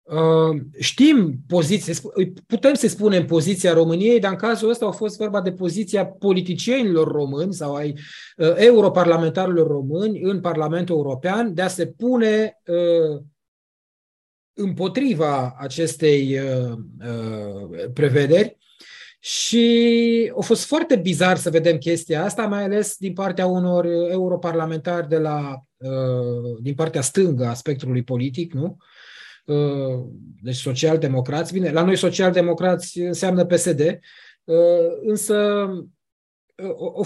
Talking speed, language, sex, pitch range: 105 wpm, Romanian, male, 155-205 Hz